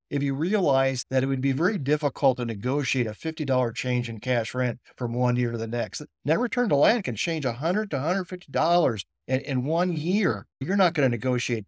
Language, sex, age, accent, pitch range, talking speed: English, male, 50-69, American, 130-170 Hz, 205 wpm